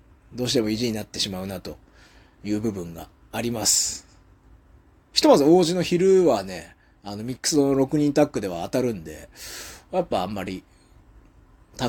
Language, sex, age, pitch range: Japanese, male, 30-49, 95-150 Hz